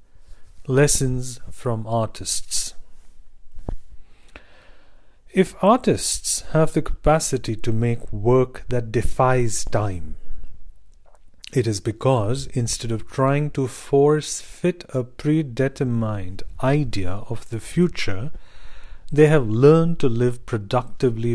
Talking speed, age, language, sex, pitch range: 100 wpm, 40-59, English, male, 105-135 Hz